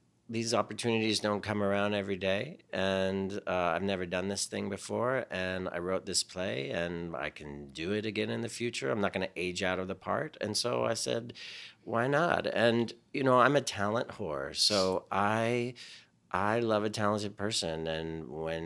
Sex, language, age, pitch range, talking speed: male, English, 40-59, 80-110 Hz, 195 wpm